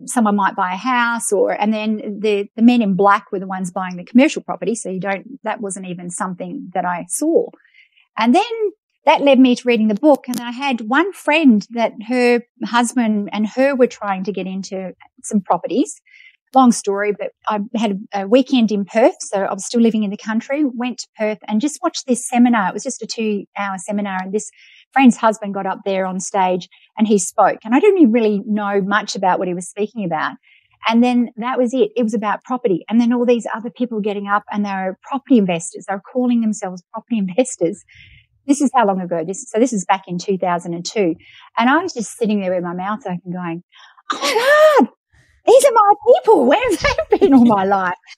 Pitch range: 200-260 Hz